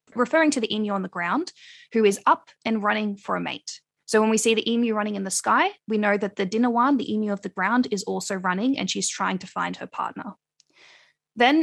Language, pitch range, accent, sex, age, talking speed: English, 195-250 Hz, Australian, female, 10-29, 235 wpm